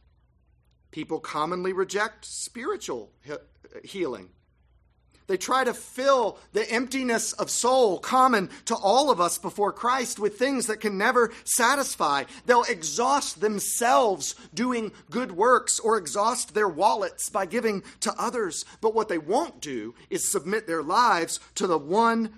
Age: 40-59